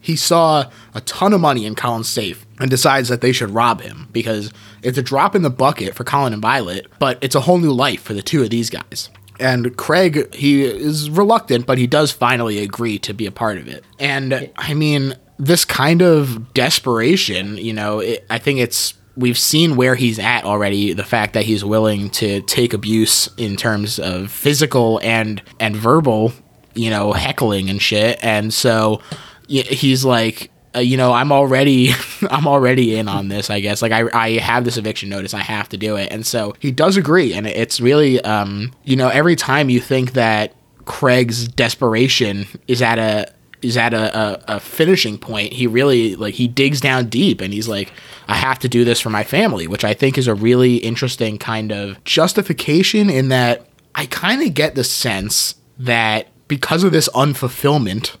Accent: American